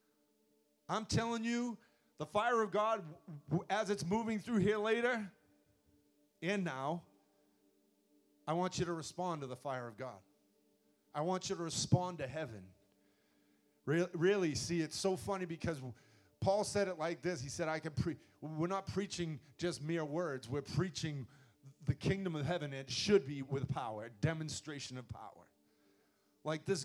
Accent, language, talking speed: American, English, 155 wpm